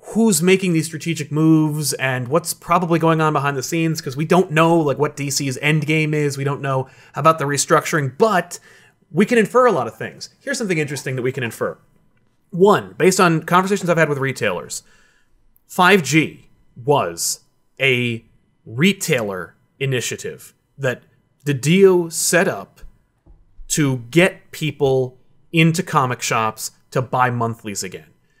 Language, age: English, 30-49